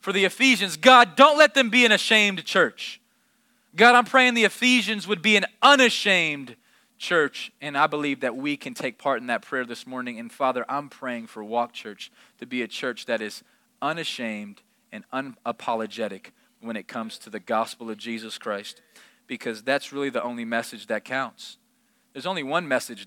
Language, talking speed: English, 185 wpm